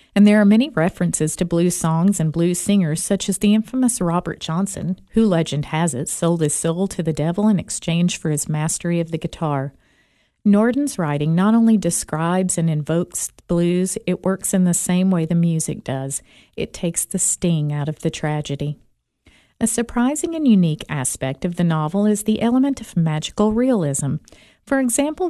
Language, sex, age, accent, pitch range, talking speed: English, female, 50-69, American, 160-210 Hz, 180 wpm